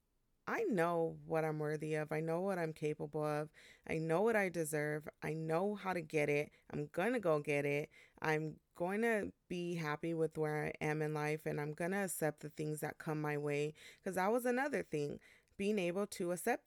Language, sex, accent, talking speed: English, female, American, 215 wpm